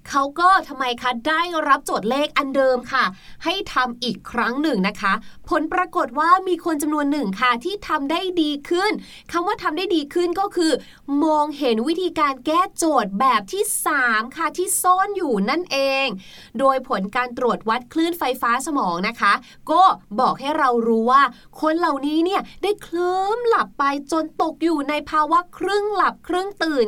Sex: female